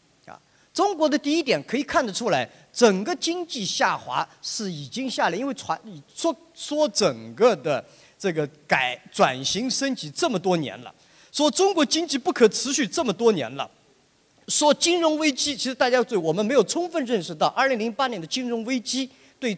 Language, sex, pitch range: Chinese, male, 185-295 Hz